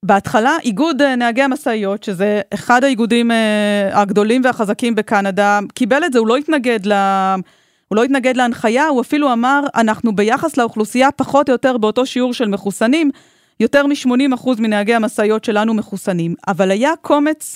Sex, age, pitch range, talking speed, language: female, 30-49, 210-260 Hz, 145 wpm, Hebrew